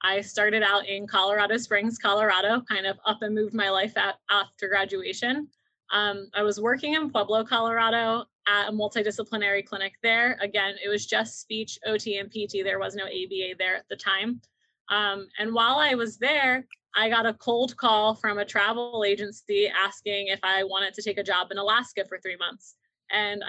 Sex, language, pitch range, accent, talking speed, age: female, English, 205-270 Hz, American, 185 wpm, 20-39